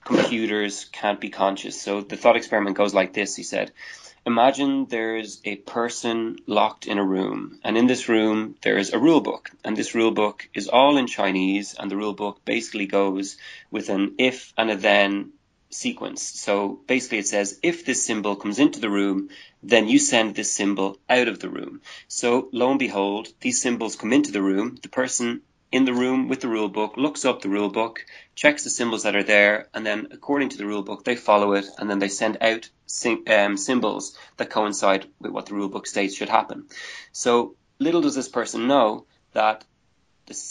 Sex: male